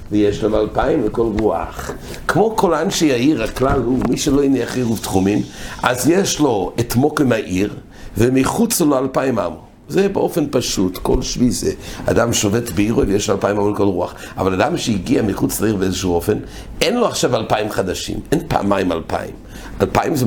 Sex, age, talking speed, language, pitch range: male, 60-79, 175 wpm, English, 100-130 Hz